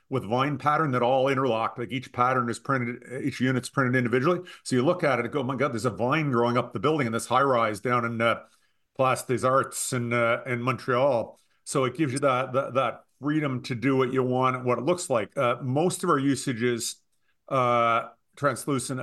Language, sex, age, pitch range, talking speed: English, male, 50-69, 120-135 Hz, 220 wpm